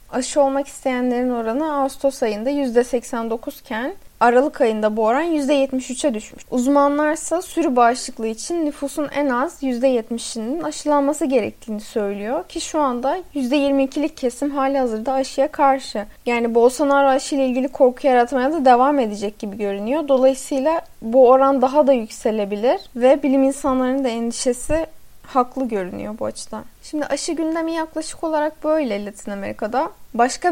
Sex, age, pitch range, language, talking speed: female, 10-29, 230-285 Hz, Turkish, 140 wpm